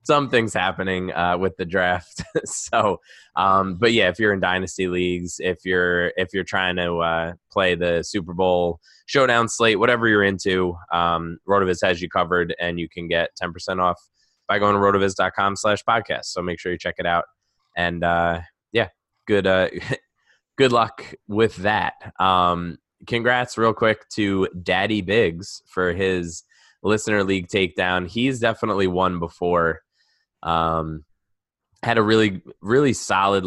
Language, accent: English, American